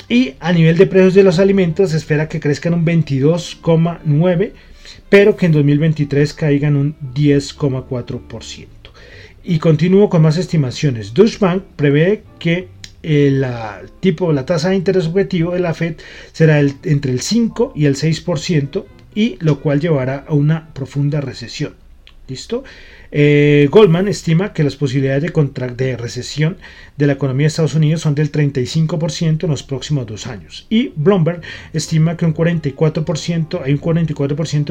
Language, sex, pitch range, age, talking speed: Spanish, male, 140-170 Hz, 30-49, 155 wpm